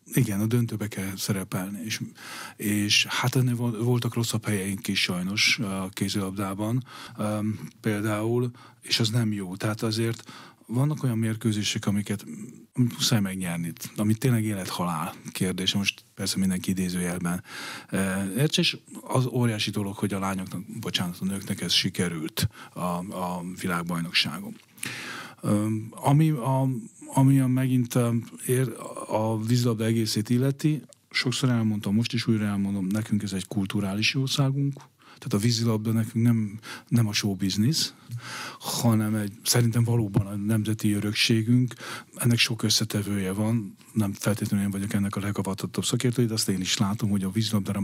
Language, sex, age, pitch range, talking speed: Hungarian, male, 40-59, 95-120 Hz, 140 wpm